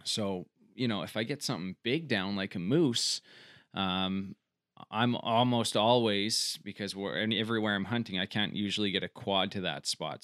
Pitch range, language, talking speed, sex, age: 90-110 Hz, English, 170 wpm, male, 20-39